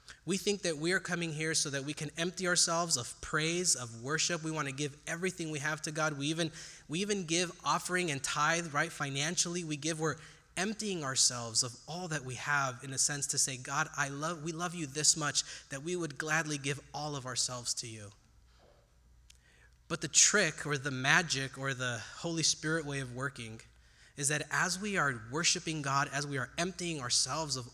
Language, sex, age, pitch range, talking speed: German, male, 20-39, 125-165 Hz, 205 wpm